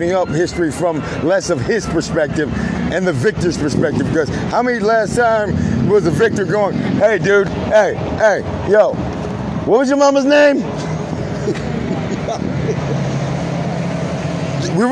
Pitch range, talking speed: 155-210 Hz, 125 wpm